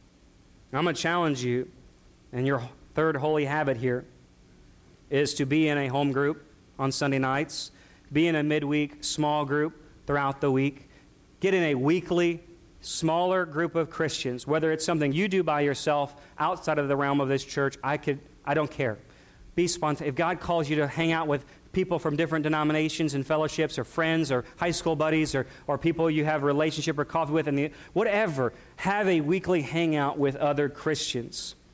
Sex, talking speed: male, 185 wpm